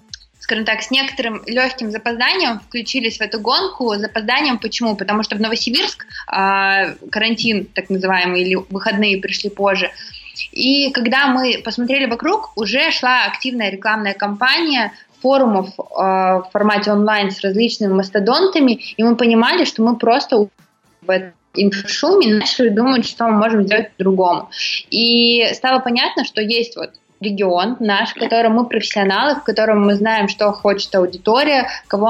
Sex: female